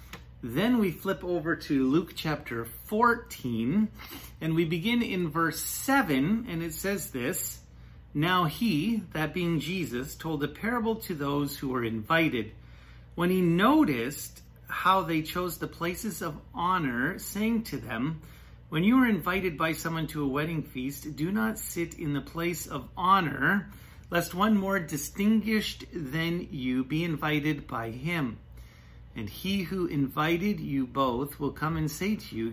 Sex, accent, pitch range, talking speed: male, American, 130-175 Hz, 155 wpm